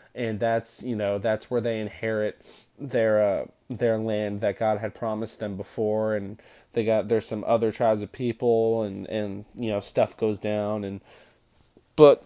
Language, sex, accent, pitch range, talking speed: English, male, American, 110-130 Hz, 175 wpm